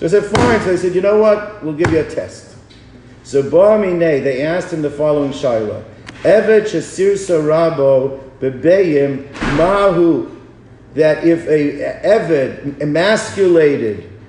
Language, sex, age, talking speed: English, male, 50-69, 140 wpm